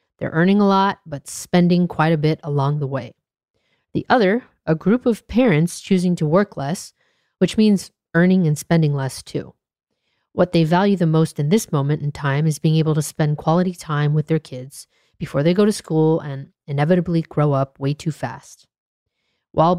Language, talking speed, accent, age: English, 190 wpm, American, 40-59